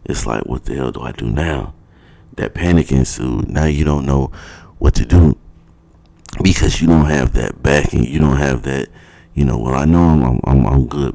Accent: American